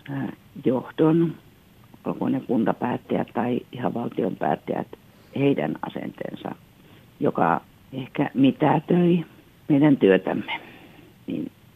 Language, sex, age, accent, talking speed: Finnish, female, 50-69, native, 70 wpm